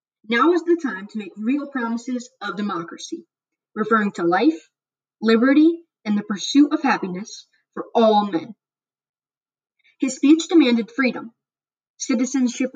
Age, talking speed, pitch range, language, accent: 20-39, 125 wpm, 210-275 Hz, English, American